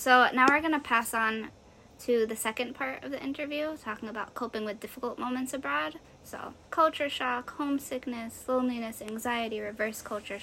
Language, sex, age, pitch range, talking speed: English, female, 10-29, 230-265 Hz, 165 wpm